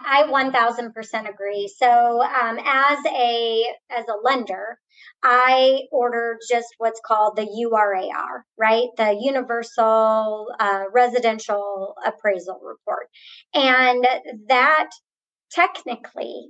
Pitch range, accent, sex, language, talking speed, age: 220-280 Hz, American, male, English, 95 wpm, 30-49